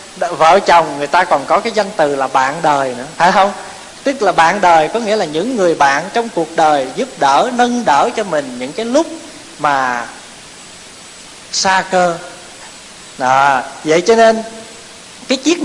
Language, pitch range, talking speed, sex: Vietnamese, 170-245 Hz, 175 wpm, male